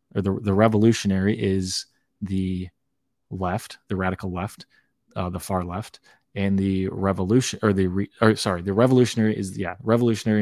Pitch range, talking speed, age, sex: 95-105 Hz, 155 wpm, 20-39, male